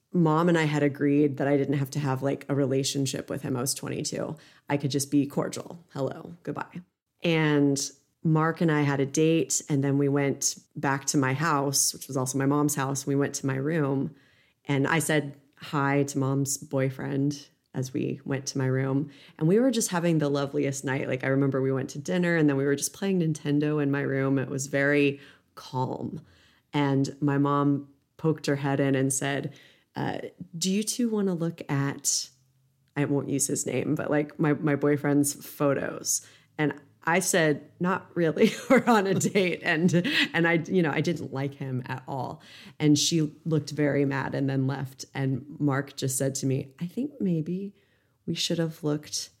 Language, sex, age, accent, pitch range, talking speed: English, female, 30-49, American, 140-160 Hz, 200 wpm